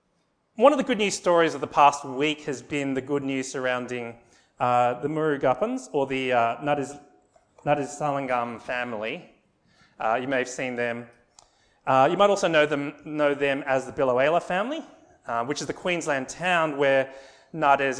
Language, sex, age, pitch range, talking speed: English, male, 30-49, 130-160 Hz, 175 wpm